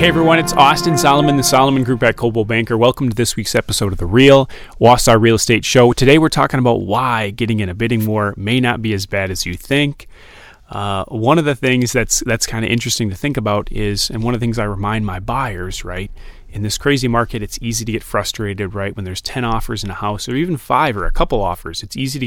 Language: English